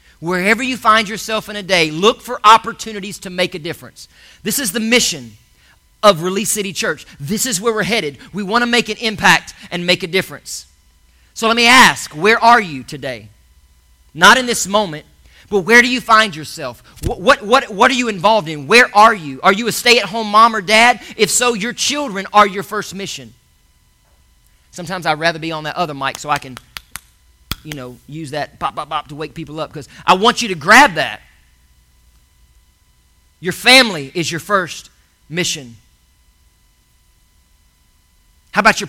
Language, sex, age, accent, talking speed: English, male, 40-59, American, 185 wpm